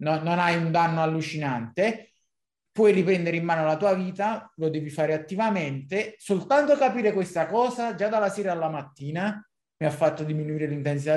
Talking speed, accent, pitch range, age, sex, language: 165 wpm, native, 140-170 Hz, 20-39, male, Italian